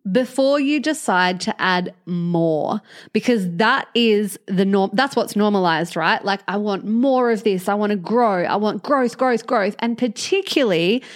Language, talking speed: English, 170 wpm